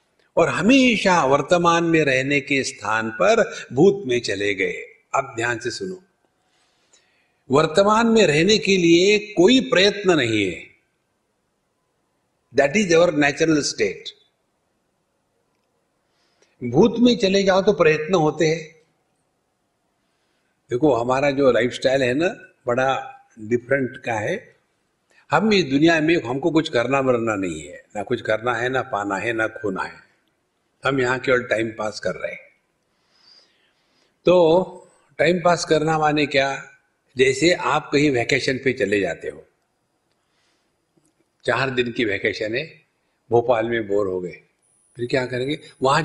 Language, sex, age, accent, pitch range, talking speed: Hindi, male, 60-79, native, 130-200 Hz, 135 wpm